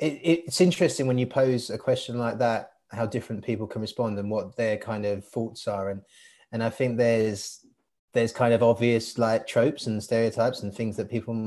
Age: 30-49